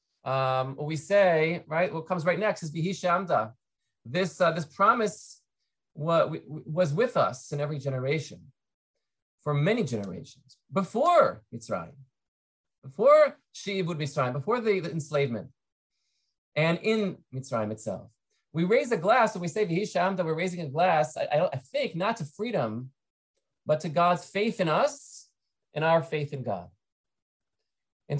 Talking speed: 155 wpm